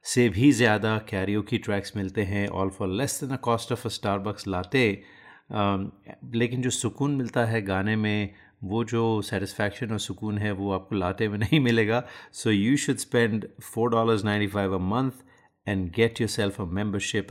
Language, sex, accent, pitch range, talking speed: Hindi, male, native, 95-120 Hz, 180 wpm